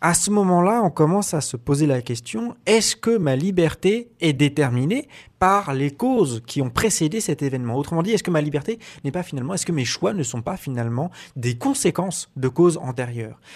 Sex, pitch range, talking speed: male, 125-180 Hz, 205 wpm